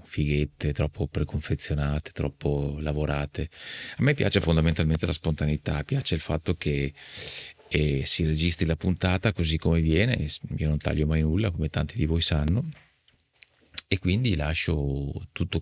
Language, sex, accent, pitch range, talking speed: Italian, male, native, 75-95 Hz, 145 wpm